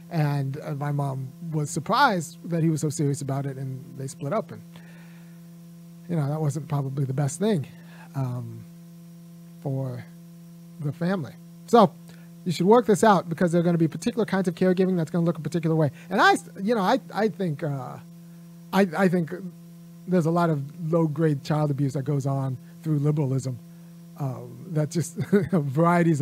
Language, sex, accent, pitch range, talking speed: English, male, American, 155-180 Hz, 180 wpm